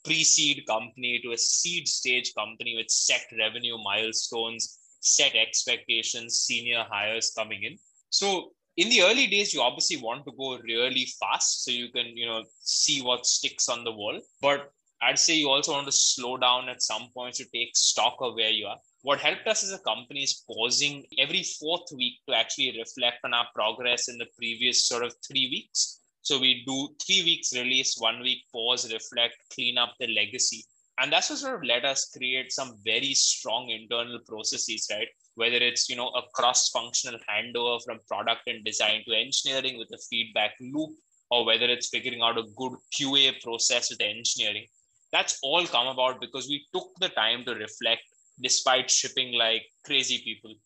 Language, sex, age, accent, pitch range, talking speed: English, male, 20-39, Indian, 115-135 Hz, 185 wpm